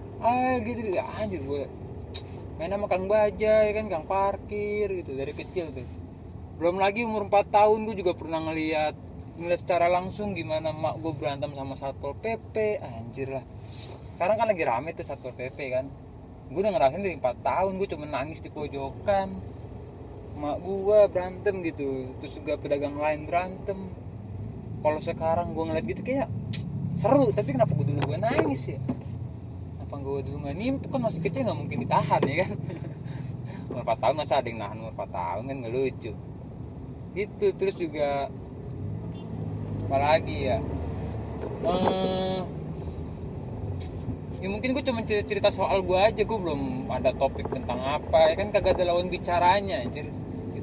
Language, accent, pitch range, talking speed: Indonesian, native, 120-195 Hz, 155 wpm